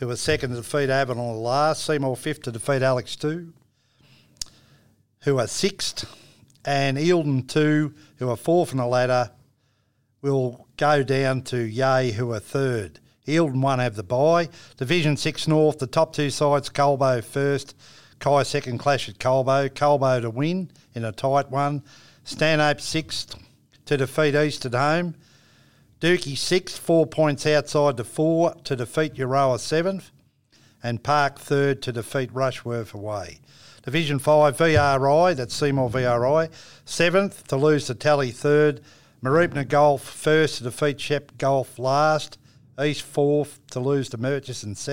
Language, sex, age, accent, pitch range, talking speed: English, male, 50-69, Australian, 125-150 Hz, 150 wpm